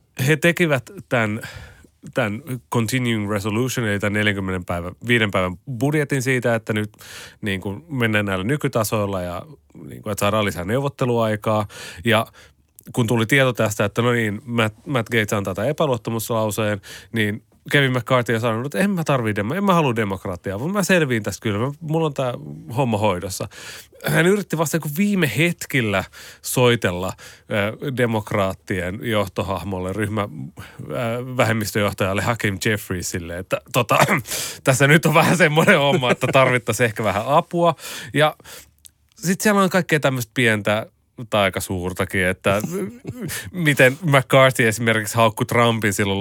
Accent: native